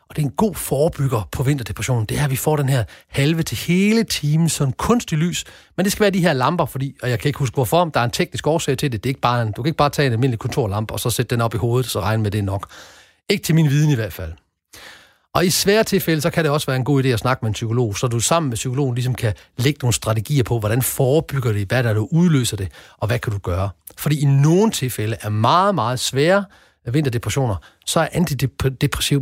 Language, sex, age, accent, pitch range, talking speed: Danish, male, 40-59, native, 115-165 Hz, 265 wpm